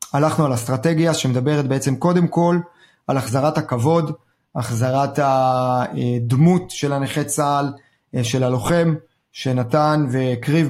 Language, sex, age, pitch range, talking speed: Hebrew, male, 30-49, 130-165 Hz, 105 wpm